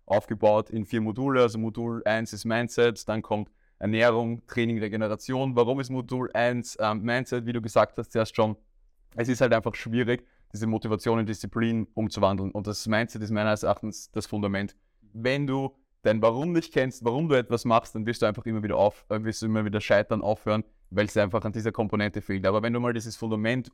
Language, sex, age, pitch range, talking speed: German, male, 20-39, 105-120 Hz, 205 wpm